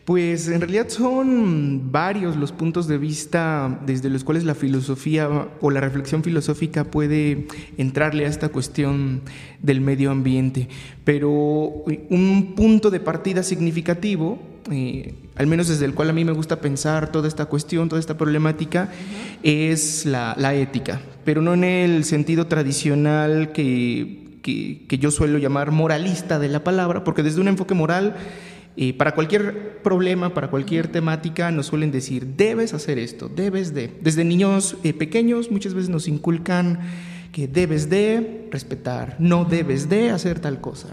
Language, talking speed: Spanish, 155 wpm